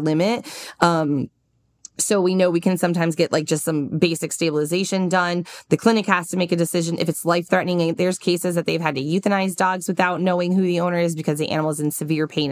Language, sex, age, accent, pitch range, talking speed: English, female, 20-39, American, 155-190 Hz, 220 wpm